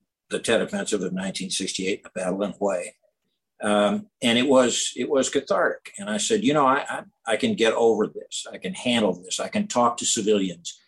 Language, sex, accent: English, male, American